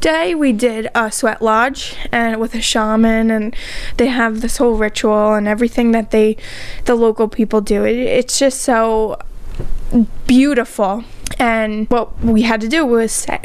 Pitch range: 225-260 Hz